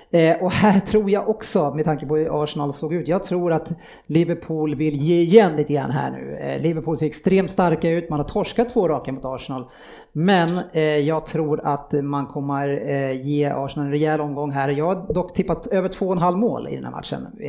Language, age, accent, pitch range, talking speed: Swedish, 30-49, Norwegian, 150-185 Hz, 210 wpm